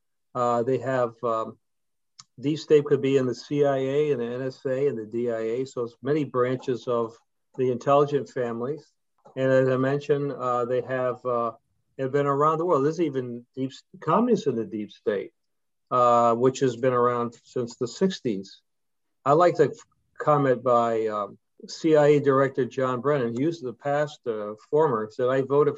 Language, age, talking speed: English, 50-69, 170 wpm